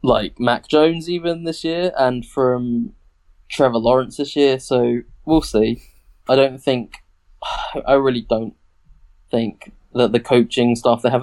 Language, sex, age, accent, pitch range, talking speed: English, male, 20-39, British, 110-140 Hz, 150 wpm